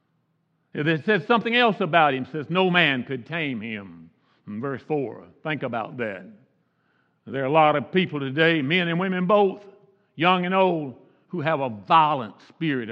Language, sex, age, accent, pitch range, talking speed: English, male, 60-79, American, 130-175 Hz, 175 wpm